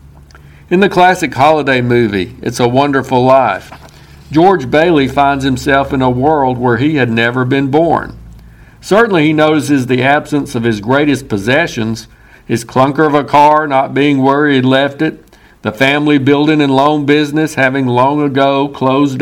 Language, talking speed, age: English, 160 wpm, 60-79